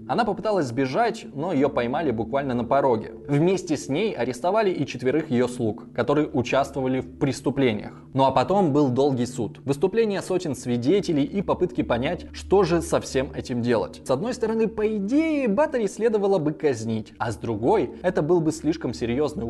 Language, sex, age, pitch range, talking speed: Russian, male, 20-39, 120-185 Hz, 170 wpm